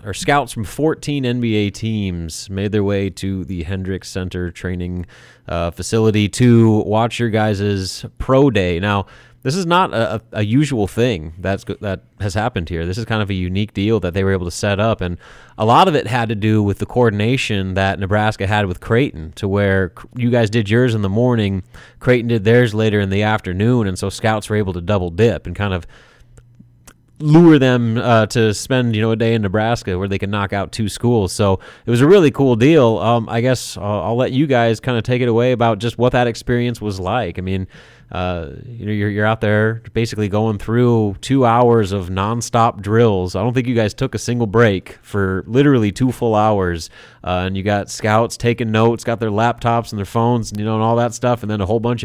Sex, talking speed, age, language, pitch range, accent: male, 220 wpm, 30-49, English, 100-120 Hz, American